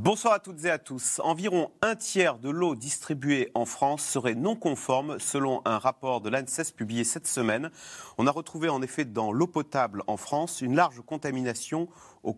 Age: 40-59